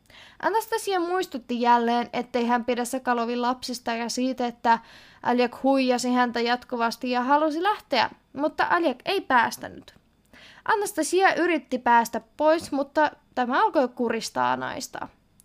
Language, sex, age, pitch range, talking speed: Finnish, female, 20-39, 240-315 Hz, 120 wpm